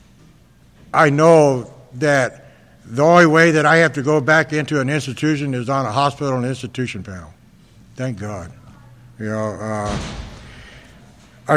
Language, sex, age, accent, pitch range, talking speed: English, male, 60-79, American, 125-170 Hz, 145 wpm